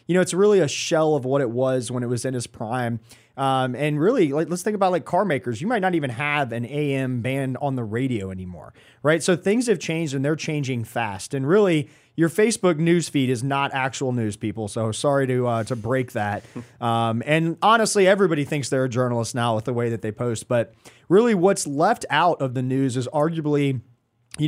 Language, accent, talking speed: English, American, 225 wpm